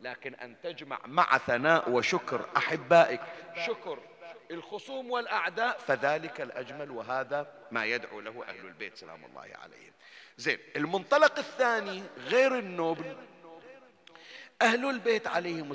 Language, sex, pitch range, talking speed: Arabic, male, 140-220 Hz, 110 wpm